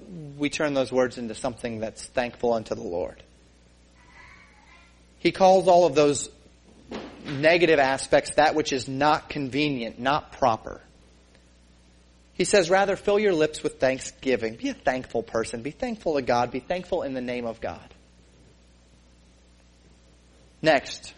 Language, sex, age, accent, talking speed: English, male, 30-49, American, 140 wpm